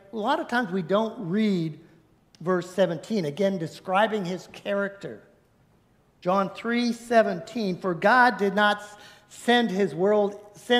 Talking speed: 120 wpm